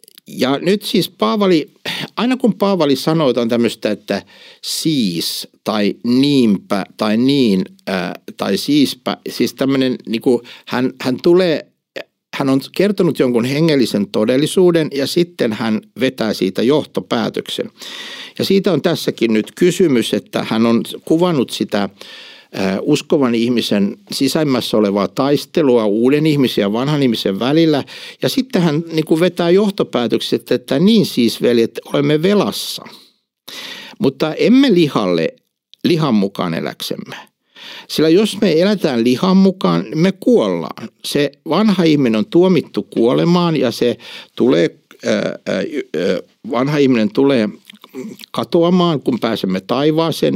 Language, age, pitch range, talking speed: Finnish, 60-79, 120-180 Hz, 120 wpm